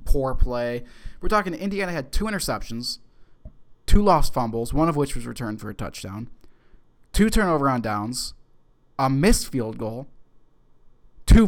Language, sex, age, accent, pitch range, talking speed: English, male, 20-39, American, 115-155 Hz, 145 wpm